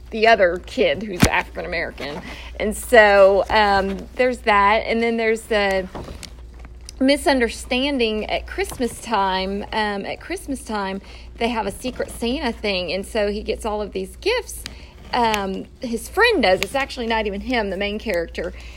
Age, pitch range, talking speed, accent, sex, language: 40-59, 195-235 Hz, 155 wpm, American, female, English